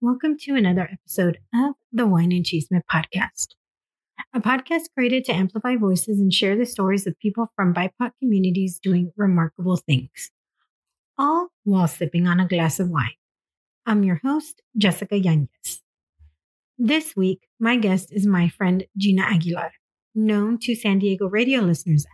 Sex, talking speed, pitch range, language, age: female, 150 wpm, 180-240 Hz, English, 30-49